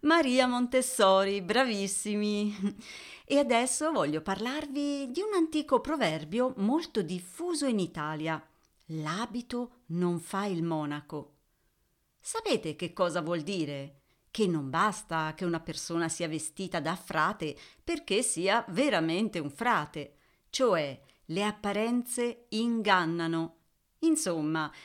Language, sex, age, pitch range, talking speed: Italian, female, 40-59, 165-250 Hz, 110 wpm